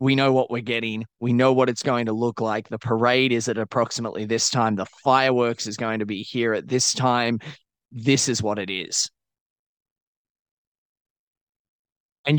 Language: English